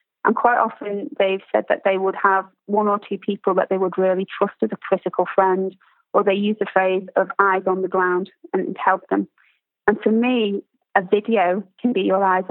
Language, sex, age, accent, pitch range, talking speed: English, female, 30-49, British, 195-225 Hz, 210 wpm